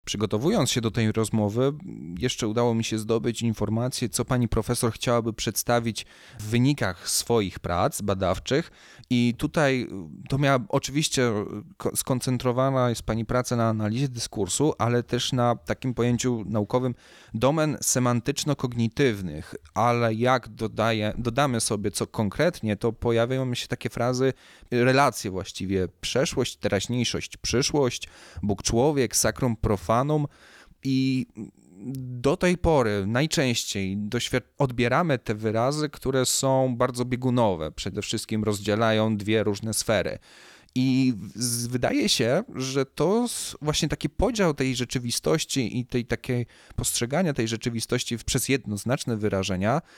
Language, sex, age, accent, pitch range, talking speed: Polish, male, 30-49, native, 110-130 Hz, 125 wpm